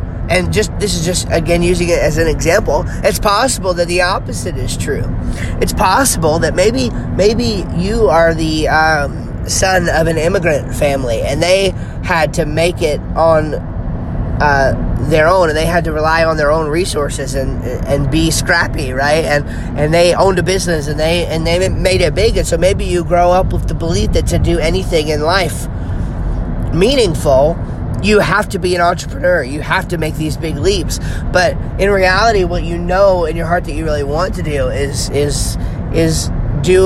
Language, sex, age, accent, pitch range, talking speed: English, male, 30-49, American, 125-175 Hz, 190 wpm